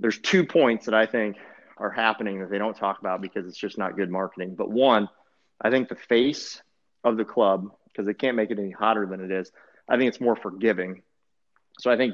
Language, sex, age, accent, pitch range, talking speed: English, male, 30-49, American, 95-110 Hz, 225 wpm